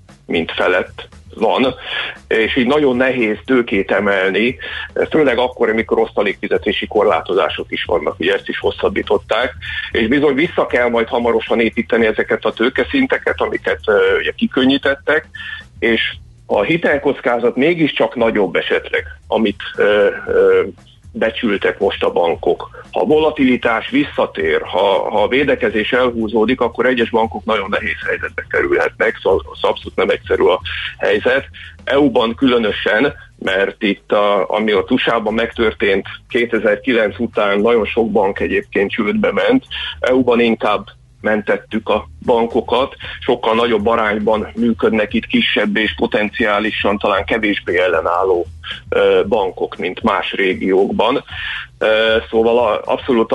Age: 50-69